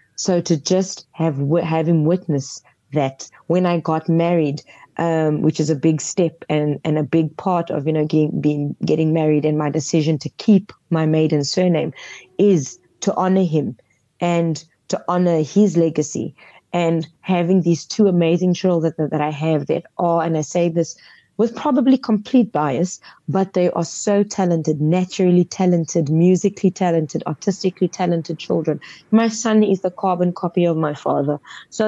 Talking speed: 165 wpm